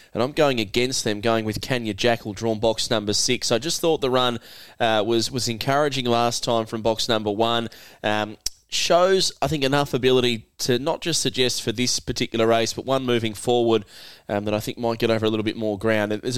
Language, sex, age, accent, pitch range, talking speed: English, male, 20-39, Australian, 110-130 Hz, 215 wpm